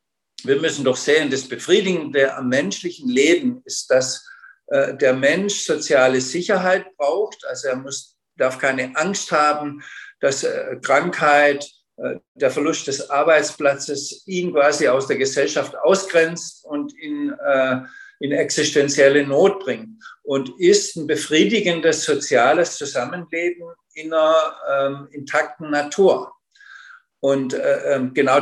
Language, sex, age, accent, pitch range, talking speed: German, male, 50-69, German, 145-215 Hz, 120 wpm